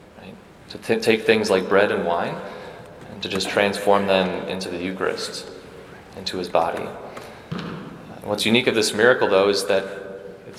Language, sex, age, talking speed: English, male, 30-49, 165 wpm